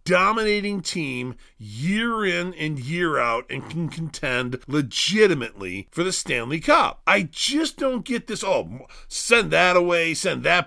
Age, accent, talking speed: 40-59, American, 145 wpm